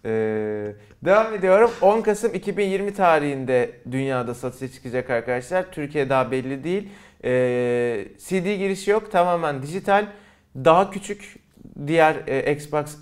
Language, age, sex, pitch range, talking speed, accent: Turkish, 30-49, male, 135-190 Hz, 120 wpm, native